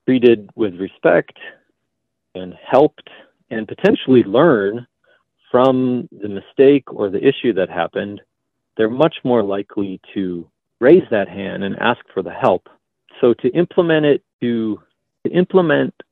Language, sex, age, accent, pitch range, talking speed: English, male, 40-59, American, 95-125 Hz, 135 wpm